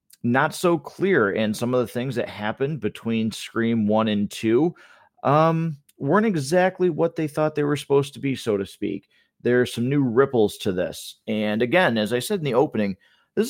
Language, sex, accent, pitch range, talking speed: English, male, American, 110-160 Hz, 200 wpm